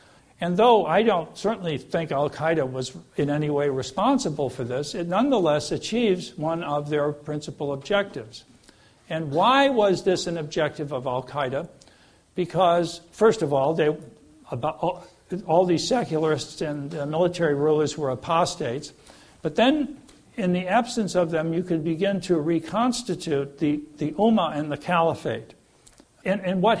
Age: 60-79